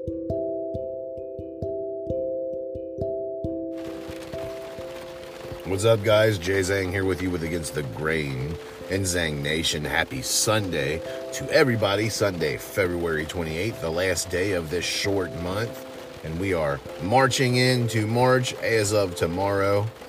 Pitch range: 80-115 Hz